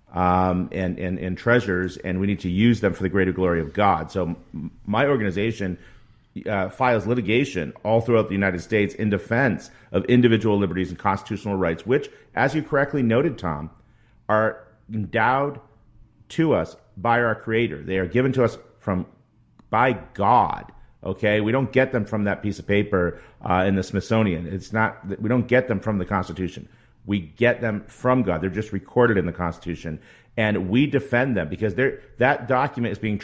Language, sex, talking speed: English, male, 180 wpm